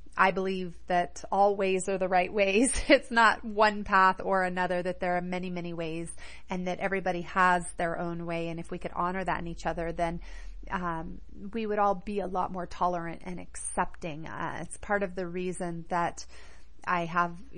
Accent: American